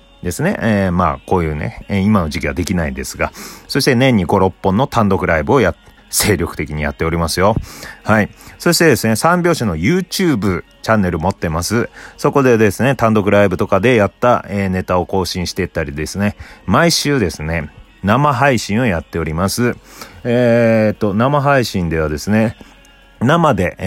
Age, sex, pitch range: 30-49, male, 80-110 Hz